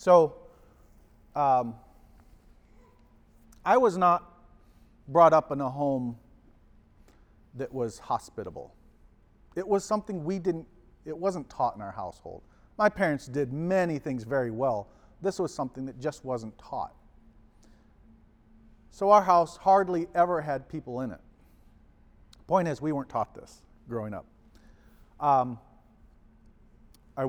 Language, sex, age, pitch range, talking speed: English, male, 40-59, 110-155 Hz, 125 wpm